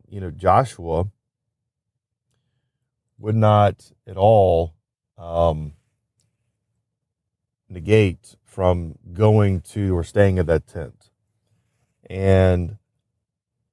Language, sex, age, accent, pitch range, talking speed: English, male, 40-59, American, 90-115 Hz, 80 wpm